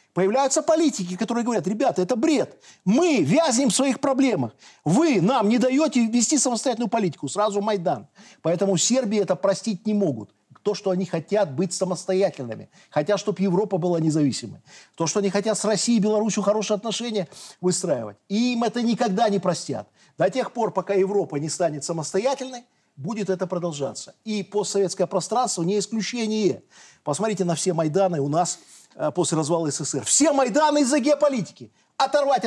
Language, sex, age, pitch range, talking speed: Russian, male, 40-59, 185-255 Hz, 155 wpm